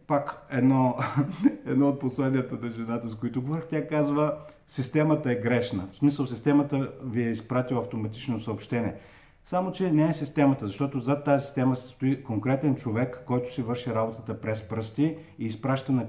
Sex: male